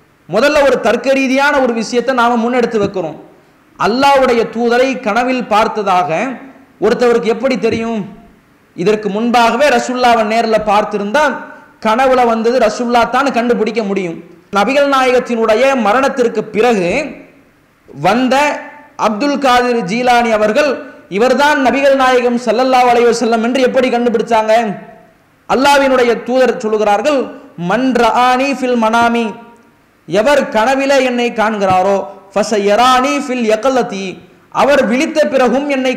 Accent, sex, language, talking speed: Indian, male, English, 95 wpm